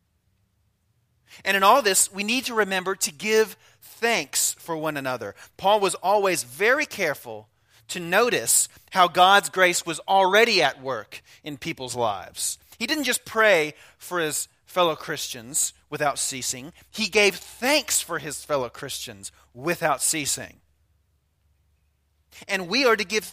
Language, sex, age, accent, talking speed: English, male, 40-59, American, 140 wpm